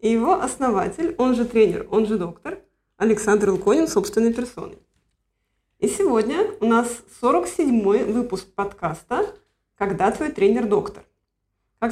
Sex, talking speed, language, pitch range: female, 120 wpm, Russian, 205-310 Hz